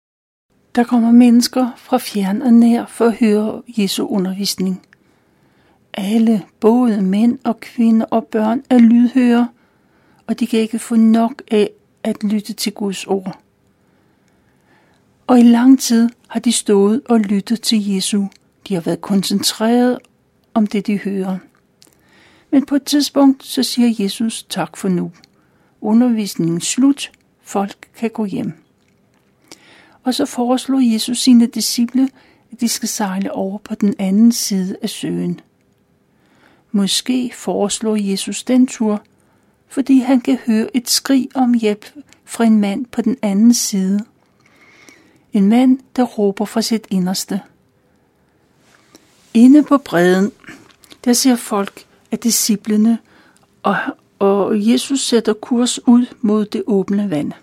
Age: 60-79